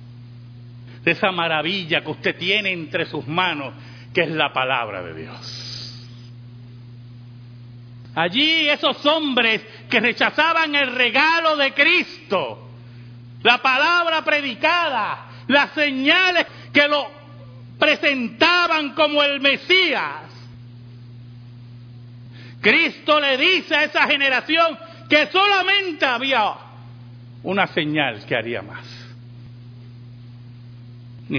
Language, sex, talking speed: Spanish, male, 95 wpm